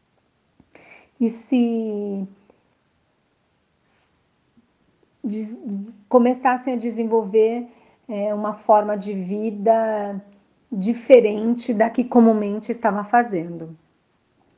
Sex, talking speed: female, 60 wpm